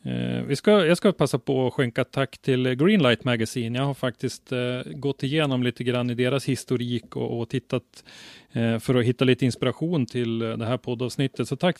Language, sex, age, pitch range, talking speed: Swedish, male, 30-49, 115-140 Hz, 200 wpm